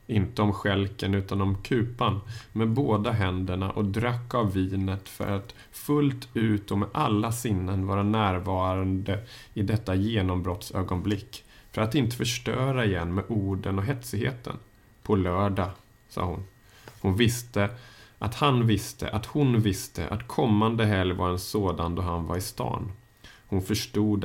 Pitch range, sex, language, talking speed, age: 95-110 Hz, male, Swedish, 150 wpm, 30-49